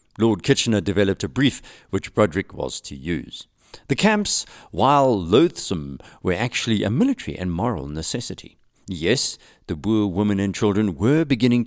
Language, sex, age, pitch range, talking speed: English, male, 50-69, 90-130 Hz, 150 wpm